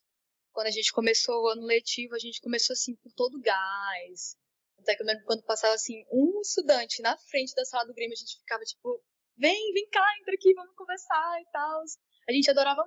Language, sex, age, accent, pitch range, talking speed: Portuguese, female, 10-29, Brazilian, 225-300 Hz, 215 wpm